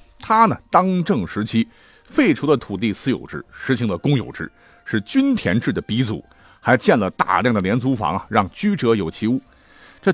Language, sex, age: Chinese, male, 50-69